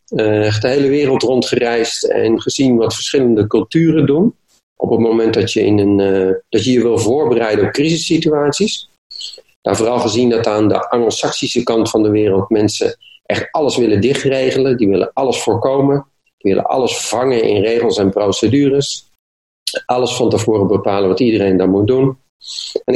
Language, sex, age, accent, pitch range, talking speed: Dutch, male, 40-59, Dutch, 110-140 Hz, 170 wpm